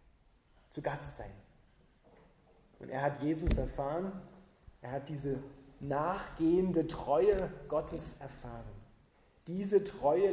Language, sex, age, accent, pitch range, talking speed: German, male, 30-49, German, 135-165 Hz, 100 wpm